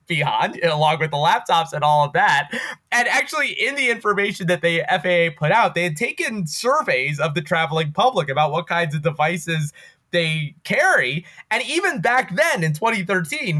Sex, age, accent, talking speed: male, 20-39, American, 175 wpm